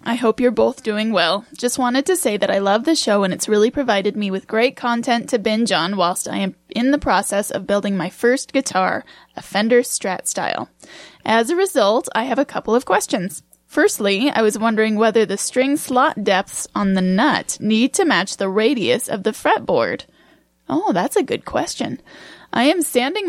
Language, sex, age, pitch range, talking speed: English, female, 10-29, 210-260 Hz, 200 wpm